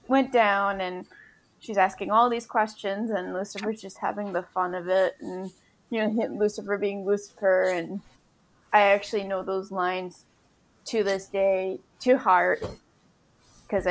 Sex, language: female, English